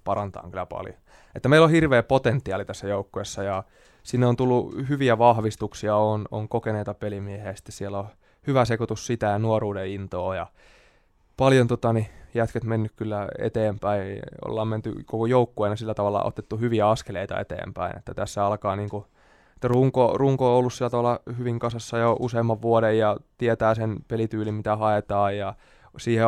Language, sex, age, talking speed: Finnish, male, 20-39, 155 wpm